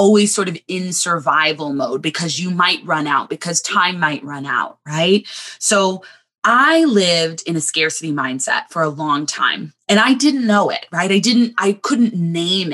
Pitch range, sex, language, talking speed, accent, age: 155-200 Hz, female, English, 185 wpm, American, 20-39